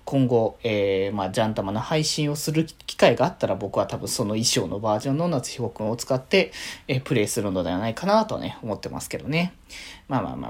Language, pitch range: Japanese, 130-210 Hz